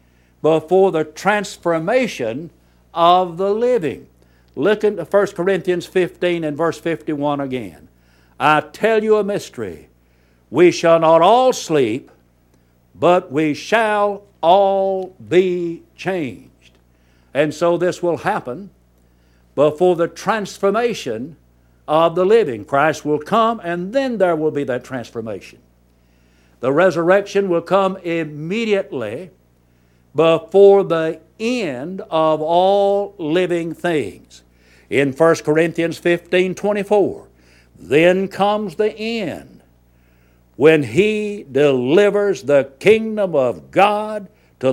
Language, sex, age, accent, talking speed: English, male, 60-79, American, 105 wpm